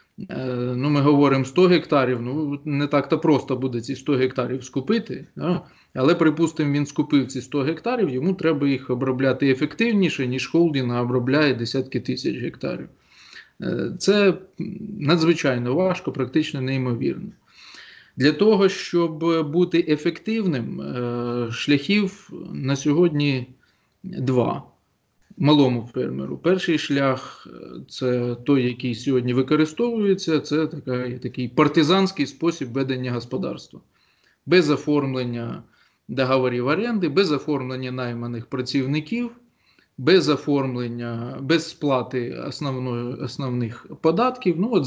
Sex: male